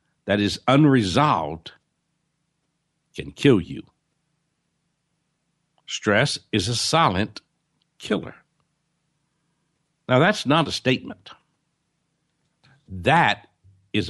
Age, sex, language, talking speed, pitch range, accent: 60-79, male, English, 75 wpm, 115-165 Hz, American